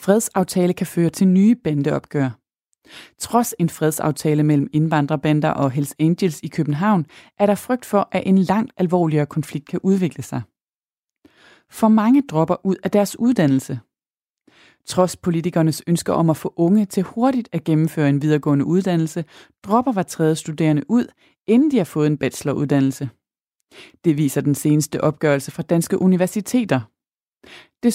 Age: 30-49